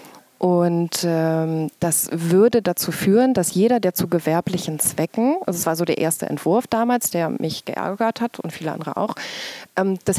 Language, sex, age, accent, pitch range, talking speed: English, female, 20-39, German, 170-210 Hz, 175 wpm